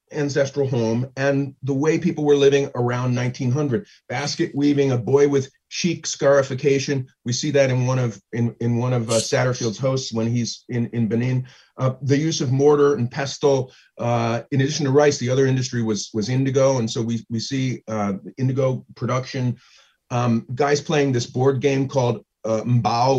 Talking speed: 180 wpm